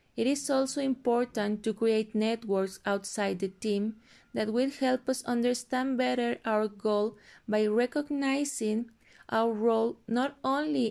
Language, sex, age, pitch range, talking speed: English, female, 20-39, 200-230 Hz, 130 wpm